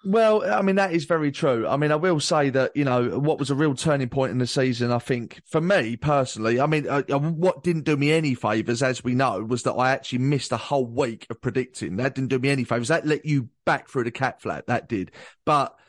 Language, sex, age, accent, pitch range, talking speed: English, male, 30-49, British, 125-175 Hz, 260 wpm